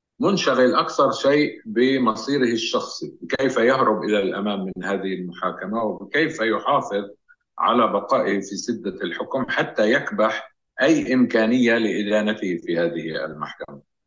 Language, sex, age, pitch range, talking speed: Arabic, male, 50-69, 100-135 Hz, 115 wpm